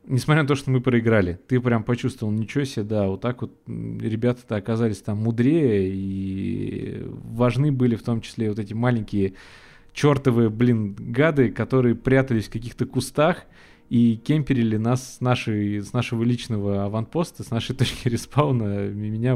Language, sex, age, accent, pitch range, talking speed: Russian, male, 20-39, native, 105-125 Hz, 150 wpm